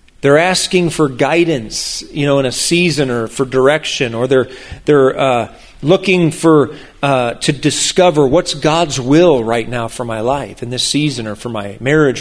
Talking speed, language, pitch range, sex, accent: 175 wpm, English, 130-155 Hz, male, American